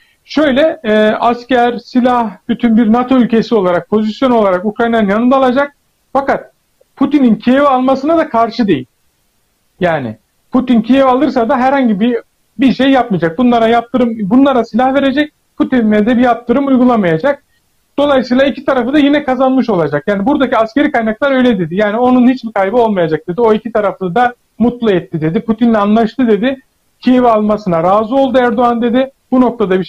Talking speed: 160 wpm